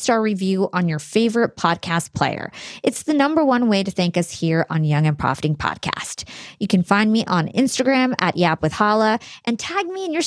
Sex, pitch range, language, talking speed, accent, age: female, 180-240 Hz, English, 205 wpm, American, 20-39